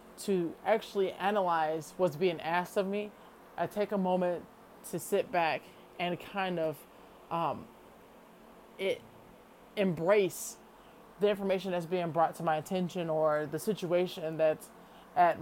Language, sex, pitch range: English, male, 170-210 Hz